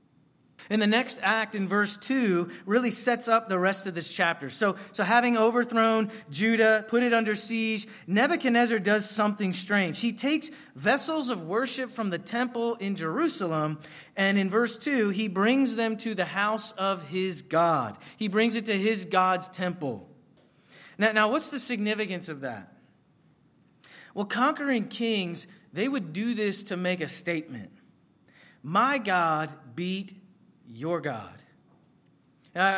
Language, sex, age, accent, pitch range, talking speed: English, male, 30-49, American, 185-230 Hz, 150 wpm